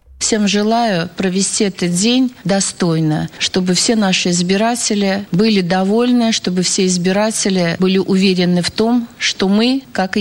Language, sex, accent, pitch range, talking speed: Russian, female, native, 170-220 Hz, 130 wpm